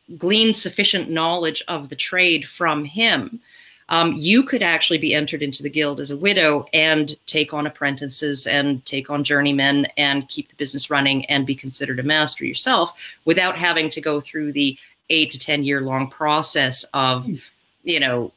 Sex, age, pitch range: female, 30-49, 135-170 Hz